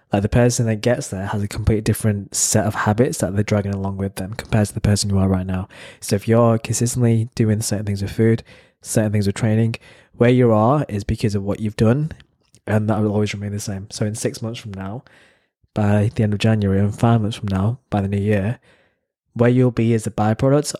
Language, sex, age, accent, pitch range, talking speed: English, male, 20-39, British, 105-120 Hz, 235 wpm